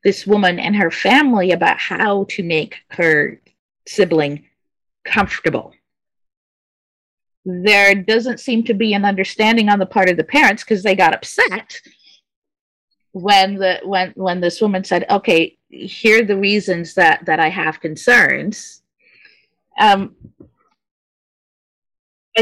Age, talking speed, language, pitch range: 40-59, 125 wpm, English, 170-215 Hz